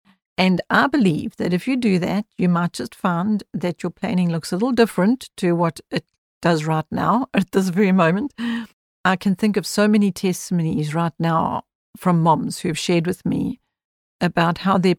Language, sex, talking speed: English, female, 190 wpm